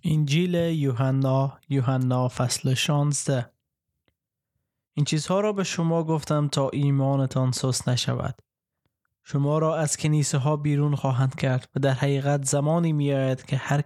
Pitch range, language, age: 130-155 Hz, Persian, 20-39